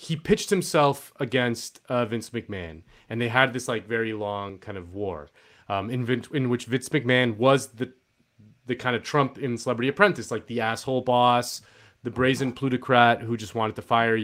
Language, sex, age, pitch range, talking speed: English, male, 30-49, 110-140 Hz, 190 wpm